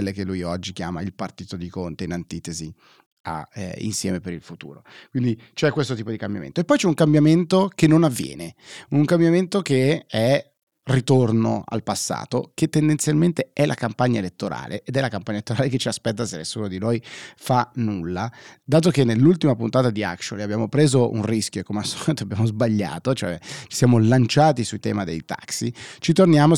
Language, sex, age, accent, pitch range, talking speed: Italian, male, 30-49, native, 110-140 Hz, 185 wpm